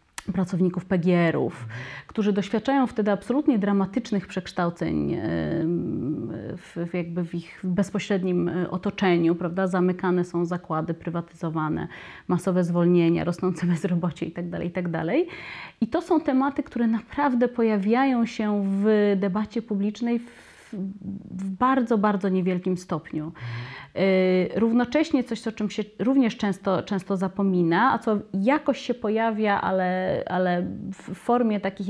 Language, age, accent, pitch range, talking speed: Polish, 30-49, native, 180-225 Hz, 115 wpm